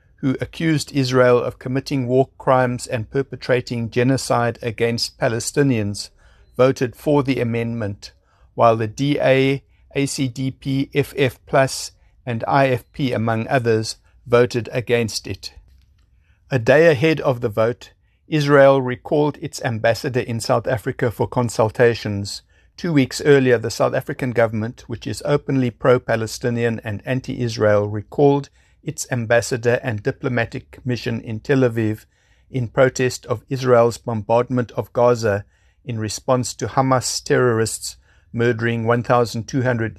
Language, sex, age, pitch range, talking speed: English, male, 60-79, 110-130 Hz, 120 wpm